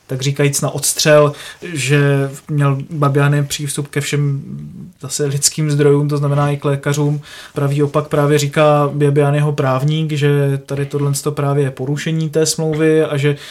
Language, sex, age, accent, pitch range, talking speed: Czech, male, 20-39, native, 145-155 Hz, 145 wpm